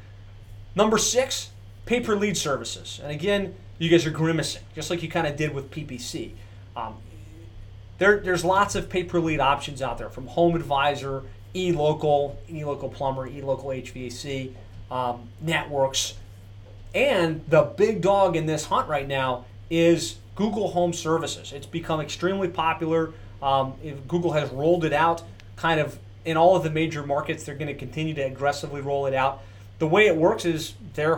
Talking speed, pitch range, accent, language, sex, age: 160 wpm, 110-170 Hz, American, English, male, 30-49